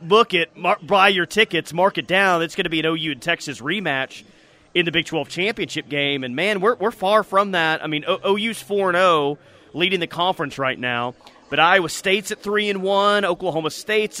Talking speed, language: 210 wpm, English